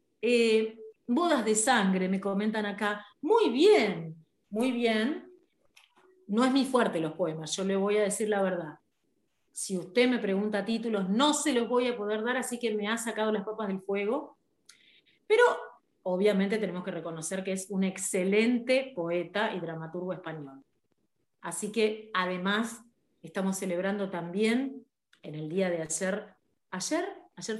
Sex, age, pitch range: female, 40-59, 190-245 Hz